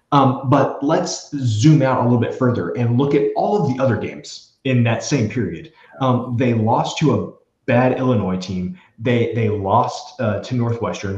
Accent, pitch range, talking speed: American, 105-125 Hz, 190 wpm